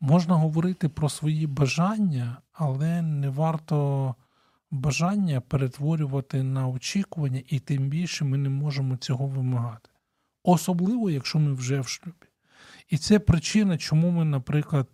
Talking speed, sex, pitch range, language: 130 wpm, male, 135-165 Hz, Ukrainian